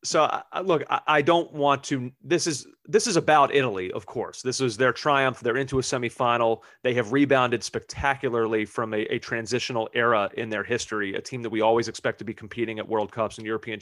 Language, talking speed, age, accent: English, 210 wpm, 30-49, American